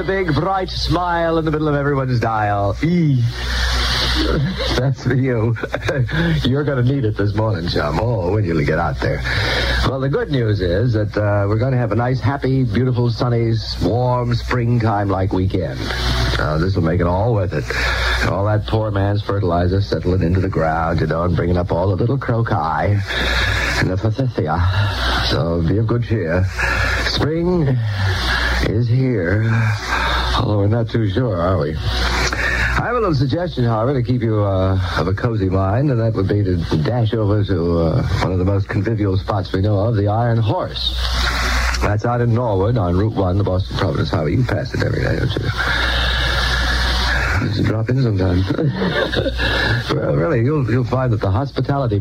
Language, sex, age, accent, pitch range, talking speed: English, male, 50-69, American, 90-120 Hz, 180 wpm